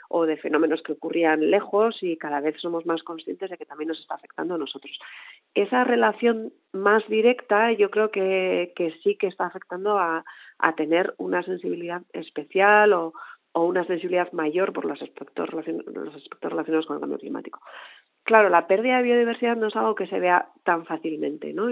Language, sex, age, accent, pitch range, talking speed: Spanish, female, 40-59, Spanish, 160-205 Hz, 190 wpm